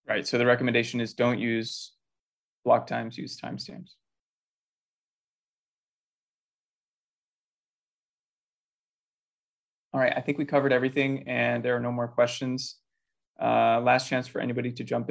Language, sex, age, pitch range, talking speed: English, male, 20-39, 120-135 Hz, 125 wpm